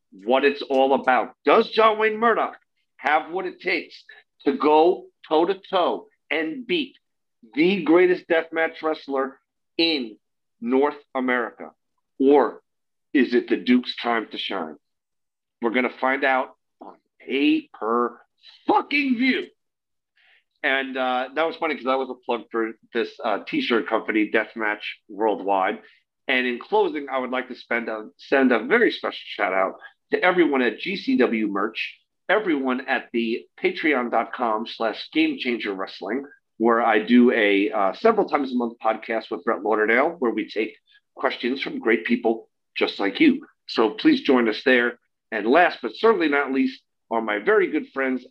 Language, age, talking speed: English, 50-69, 155 wpm